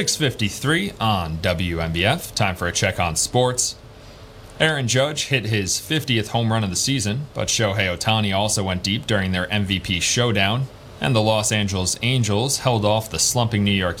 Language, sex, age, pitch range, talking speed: English, male, 30-49, 95-120 Hz, 165 wpm